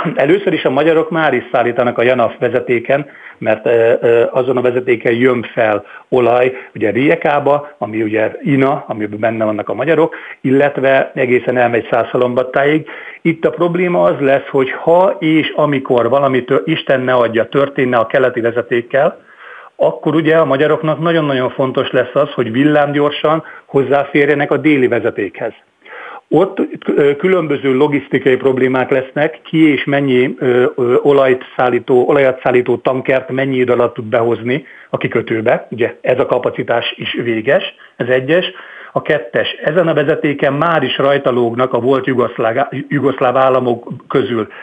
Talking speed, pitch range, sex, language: 135 wpm, 125-155 Hz, male, Hungarian